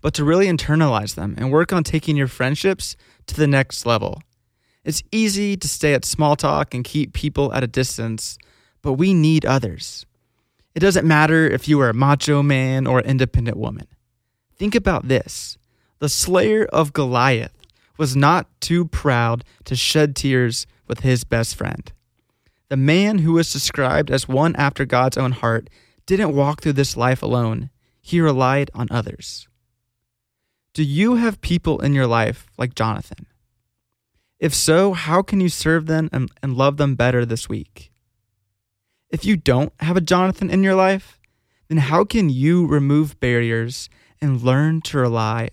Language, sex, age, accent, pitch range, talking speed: English, male, 20-39, American, 120-155 Hz, 165 wpm